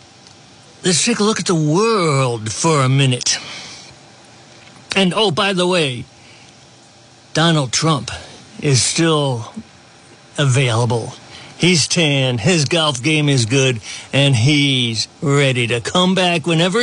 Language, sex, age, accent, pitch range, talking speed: English, male, 60-79, American, 140-180 Hz, 120 wpm